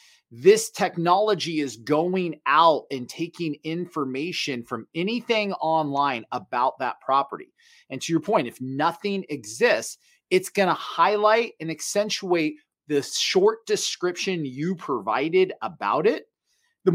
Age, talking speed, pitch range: 30-49, 120 wpm, 145-215 Hz